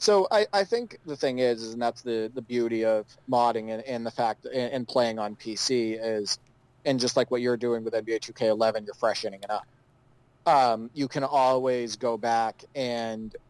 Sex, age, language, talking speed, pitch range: male, 30-49, English, 200 wpm, 110-130 Hz